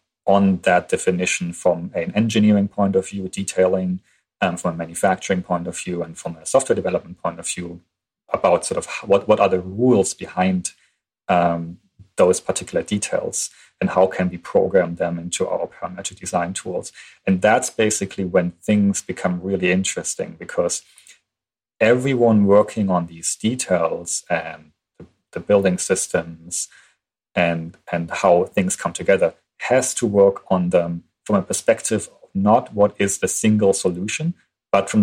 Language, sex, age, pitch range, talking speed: English, male, 30-49, 90-105 Hz, 155 wpm